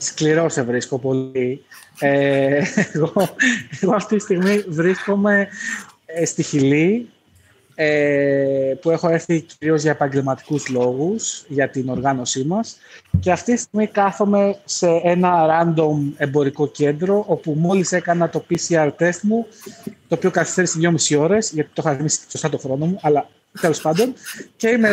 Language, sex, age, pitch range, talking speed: Greek, male, 20-39, 145-190 Hz, 140 wpm